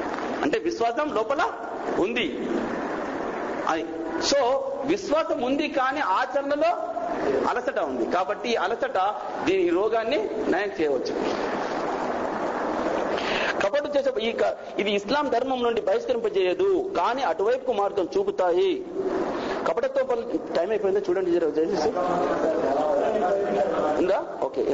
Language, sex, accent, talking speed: Telugu, male, native, 80 wpm